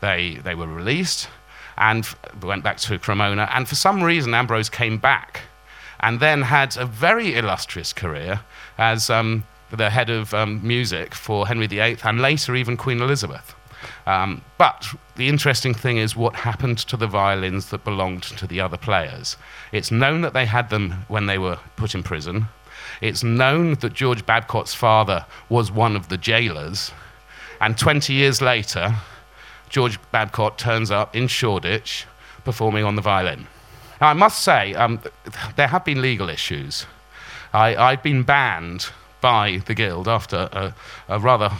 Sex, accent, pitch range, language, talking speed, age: male, British, 105-130 Hz, English, 165 wpm, 40-59